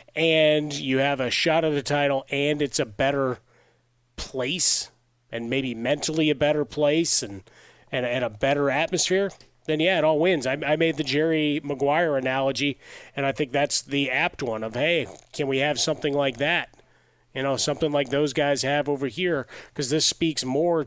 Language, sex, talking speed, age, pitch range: English, male, 185 wpm, 30-49, 125-145 Hz